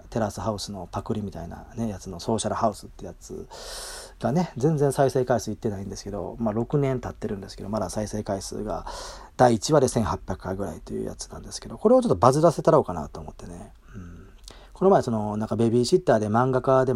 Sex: male